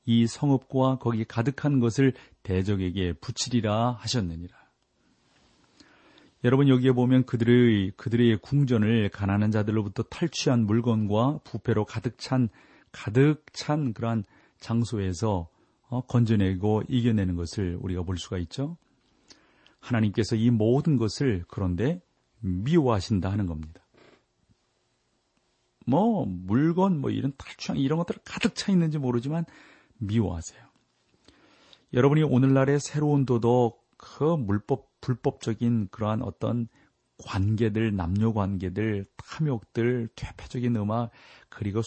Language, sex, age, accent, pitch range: Korean, male, 40-59, native, 100-135 Hz